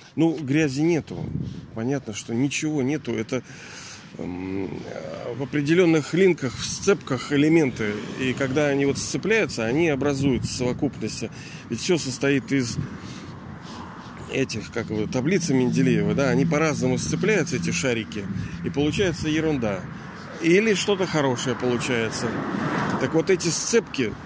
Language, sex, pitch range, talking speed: Russian, male, 115-145 Hz, 125 wpm